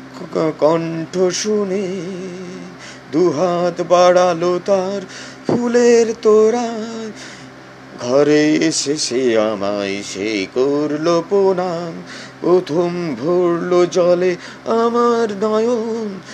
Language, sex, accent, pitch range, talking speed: Bengali, male, native, 155-230 Hz, 35 wpm